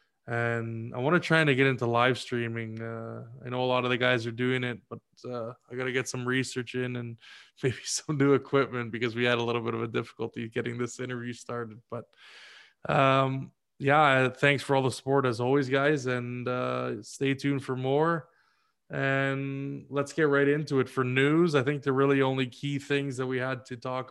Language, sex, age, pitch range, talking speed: English, male, 20-39, 120-135 Hz, 210 wpm